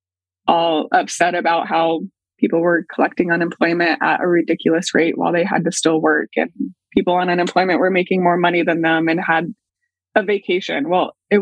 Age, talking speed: 20-39, 180 wpm